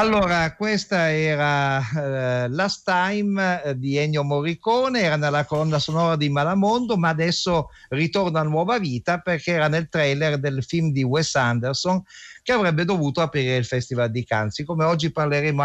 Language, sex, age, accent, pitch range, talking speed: Italian, male, 50-69, native, 125-170 Hz, 155 wpm